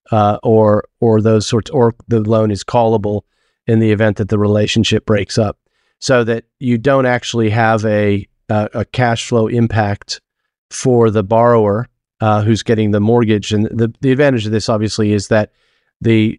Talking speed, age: 175 wpm, 40-59